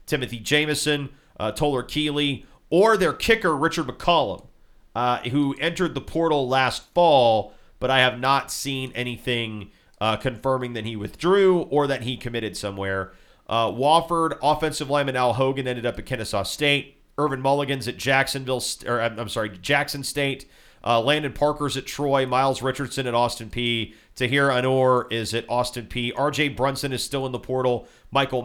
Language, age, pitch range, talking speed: English, 40-59, 110-140 Hz, 160 wpm